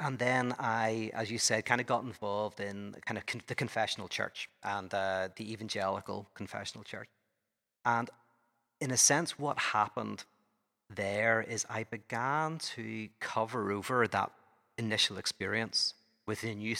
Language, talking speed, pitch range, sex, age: English, 145 wpm, 100-120 Hz, male, 40-59